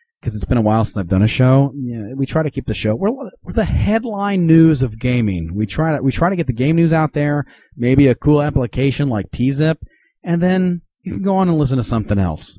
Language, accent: English, American